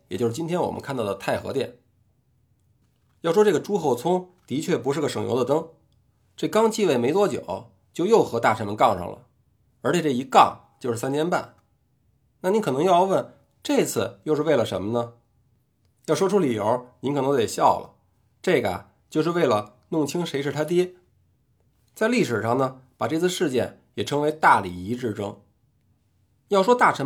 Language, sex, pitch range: Chinese, male, 115-175 Hz